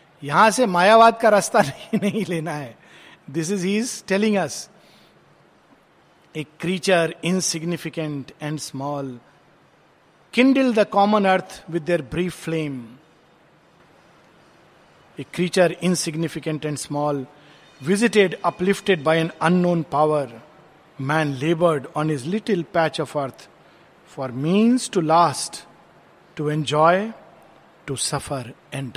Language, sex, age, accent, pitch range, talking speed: Hindi, male, 50-69, native, 150-205 Hz, 110 wpm